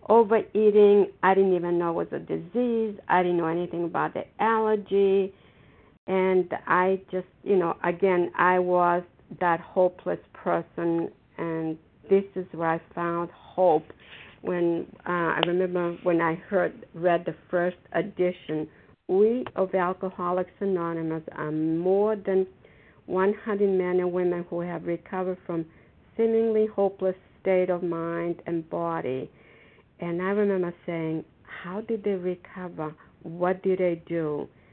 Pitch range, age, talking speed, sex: 170-195 Hz, 60-79, 135 wpm, female